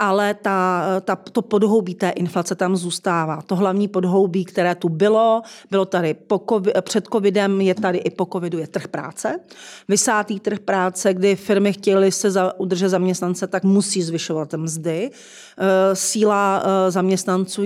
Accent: native